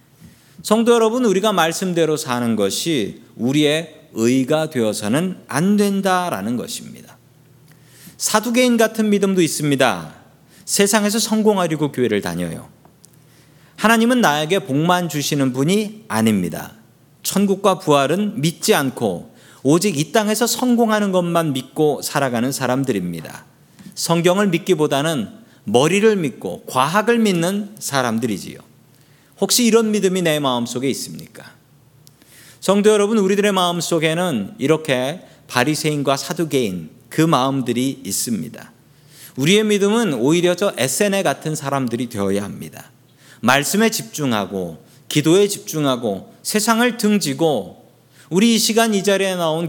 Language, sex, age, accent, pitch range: Korean, male, 40-59, native, 135-200 Hz